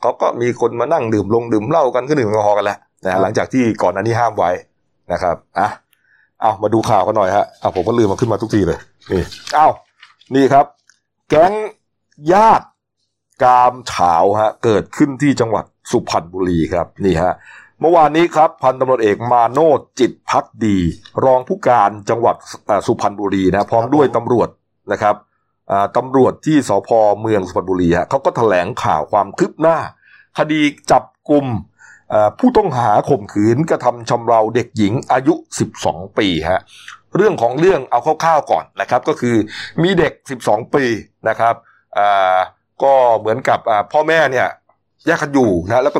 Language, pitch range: Thai, 105-145 Hz